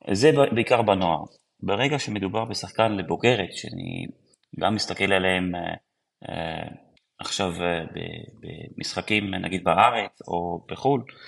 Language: Hebrew